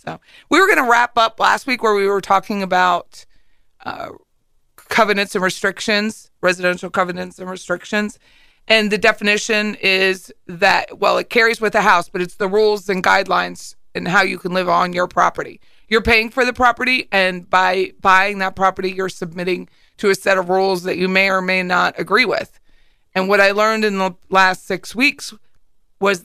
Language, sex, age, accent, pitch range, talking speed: English, female, 40-59, American, 185-210 Hz, 185 wpm